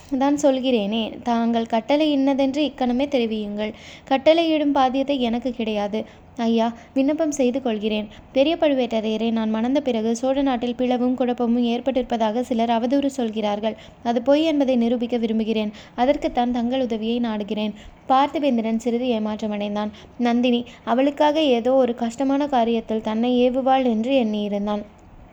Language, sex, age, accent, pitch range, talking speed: Tamil, female, 20-39, native, 225-265 Hz, 115 wpm